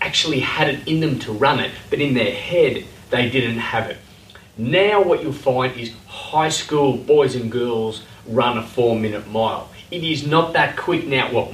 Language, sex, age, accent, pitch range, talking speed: English, male, 30-49, Australian, 110-140 Hz, 200 wpm